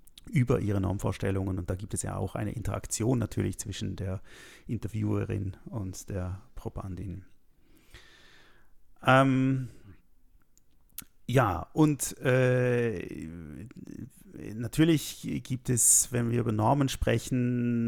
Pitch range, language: 100-120 Hz, German